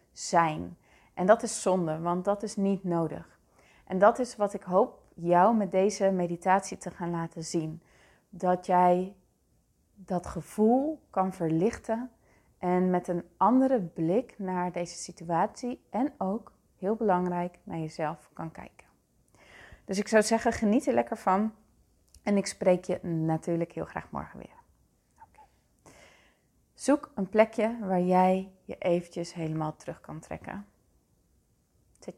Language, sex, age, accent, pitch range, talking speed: Dutch, female, 30-49, Dutch, 170-205 Hz, 140 wpm